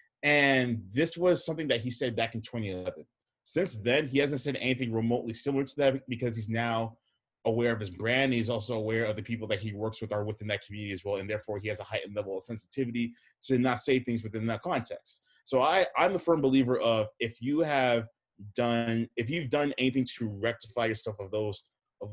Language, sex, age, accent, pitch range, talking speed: English, male, 20-39, American, 110-130 Hz, 215 wpm